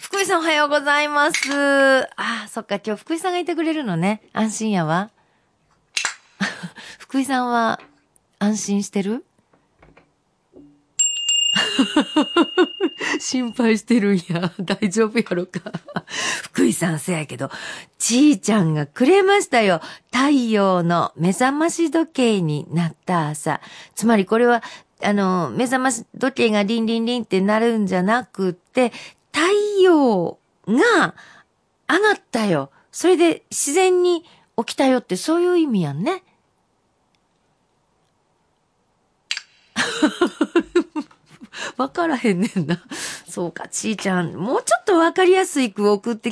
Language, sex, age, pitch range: Japanese, female, 50-69, 200-310 Hz